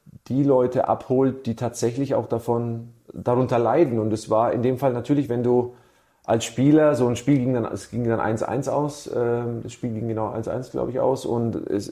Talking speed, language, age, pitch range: 200 wpm, German, 40-59, 115-130 Hz